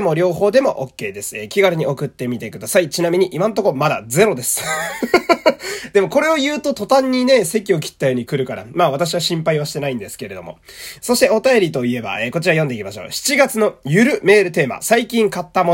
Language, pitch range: Japanese, 140-225 Hz